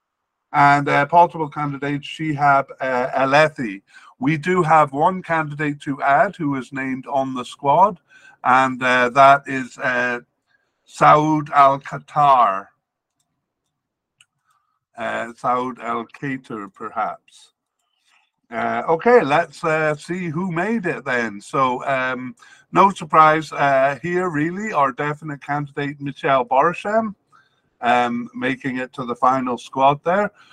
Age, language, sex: 50-69, English, male